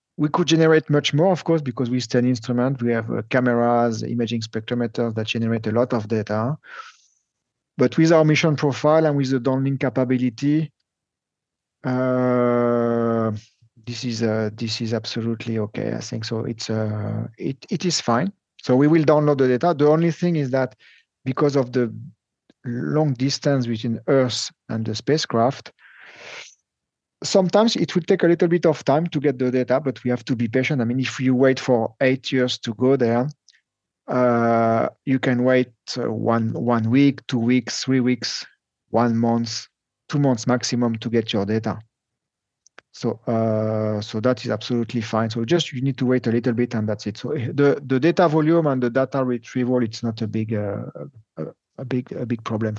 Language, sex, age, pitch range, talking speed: English, male, 40-59, 115-140 Hz, 180 wpm